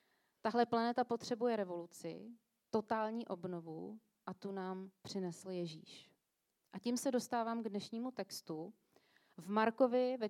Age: 30-49